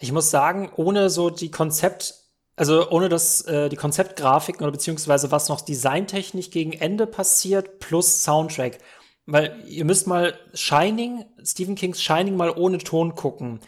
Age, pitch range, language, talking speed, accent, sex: 30-49, 145-175 Hz, German, 150 wpm, German, male